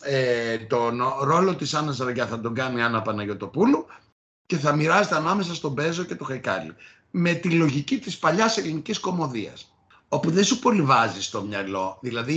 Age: 60-79